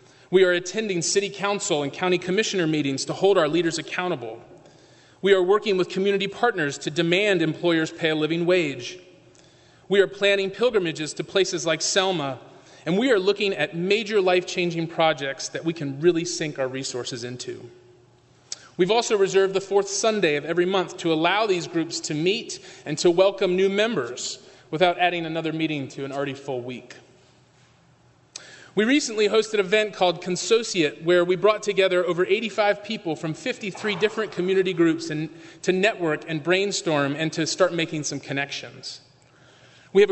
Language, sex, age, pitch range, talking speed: English, male, 30-49, 155-195 Hz, 170 wpm